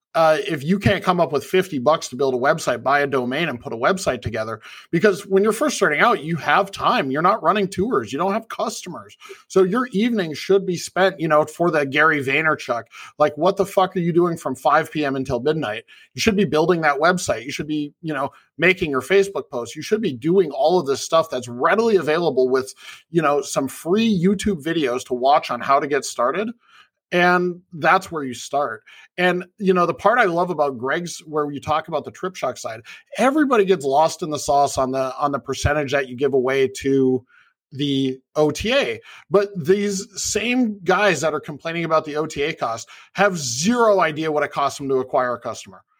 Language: English